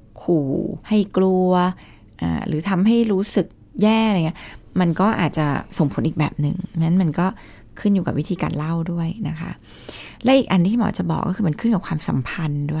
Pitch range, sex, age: 145-200 Hz, female, 20-39